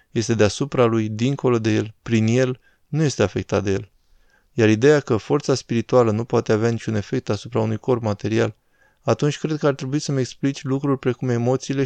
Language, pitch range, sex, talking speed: Romanian, 110-130 Hz, male, 185 wpm